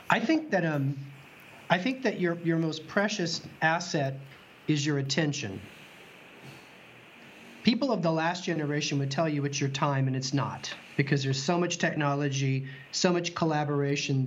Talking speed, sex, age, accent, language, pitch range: 155 wpm, male, 40-59, American, English, 135-165 Hz